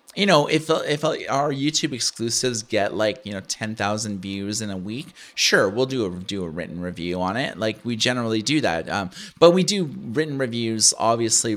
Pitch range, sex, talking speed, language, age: 110-150 Hz, male, 200 wpm, English, 30-49